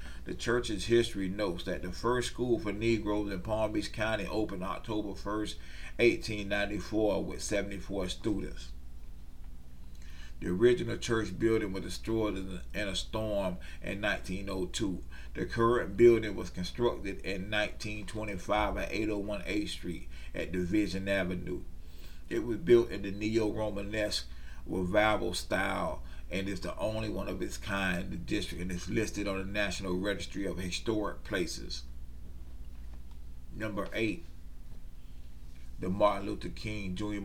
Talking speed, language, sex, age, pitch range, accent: 135 wpm, English, male, 40-59, 65-105 Hz, American